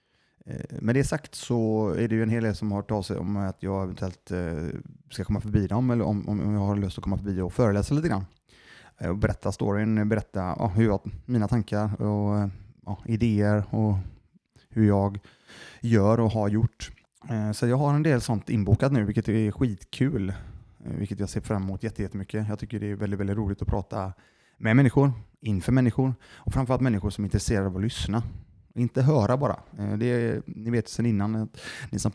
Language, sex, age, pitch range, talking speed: Swedish, male, 20-39, 100-115 Hz, 195 wpm